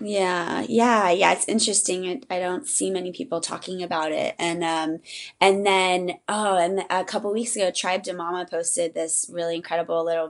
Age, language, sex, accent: 20-39, English, female, American